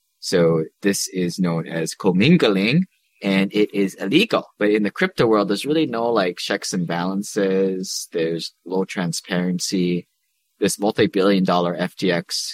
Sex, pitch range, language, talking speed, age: male, 90-105 Hz, English, 140 wpm, 20-39